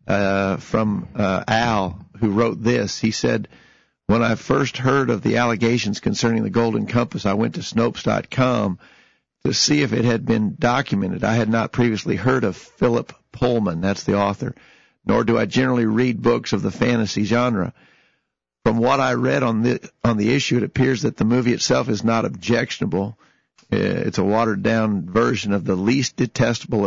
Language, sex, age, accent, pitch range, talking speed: English, male, 50-69, American, 105-120 Hz, 180 wpm